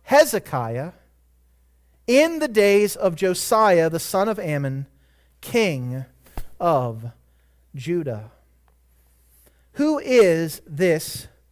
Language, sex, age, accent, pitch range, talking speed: English, male, 40-59, American, 140-215 Hz, 85 wpm